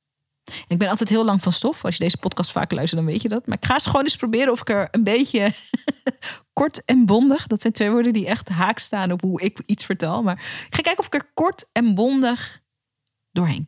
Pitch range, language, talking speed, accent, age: 180-250 Hz, Dutch, 245 wpm, Dutch, 40-59